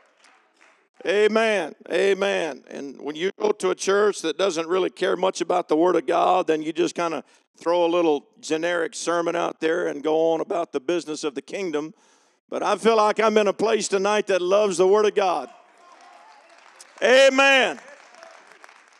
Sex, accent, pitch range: male, American, 170-240 Hz